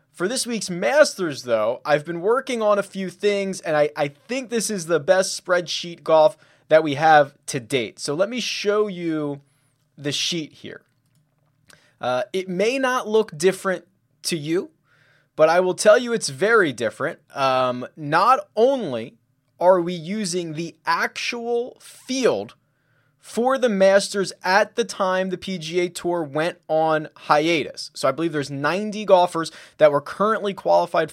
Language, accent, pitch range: English, American, 145-195 Hz